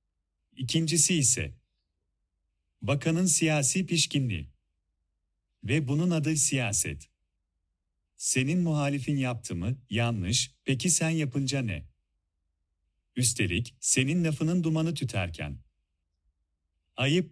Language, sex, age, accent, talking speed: Turkish, male, 40-59, native, 85 wpm